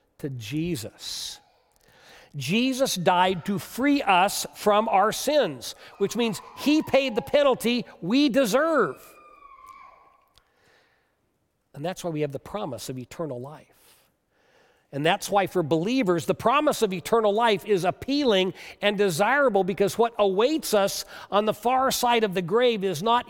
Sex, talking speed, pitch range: male, 140 wpm, 140-225 Hz